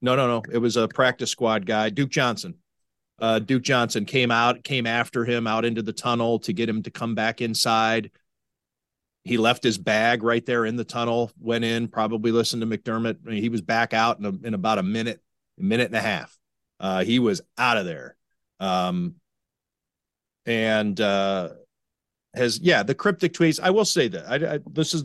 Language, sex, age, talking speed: English, male, 40-59, 190 wpm